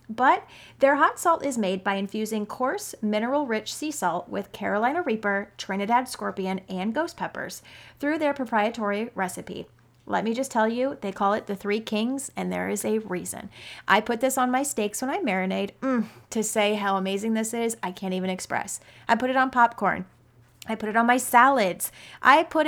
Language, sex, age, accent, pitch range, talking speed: English, female, 30-49, American, 195-255 Hz, 190 wpm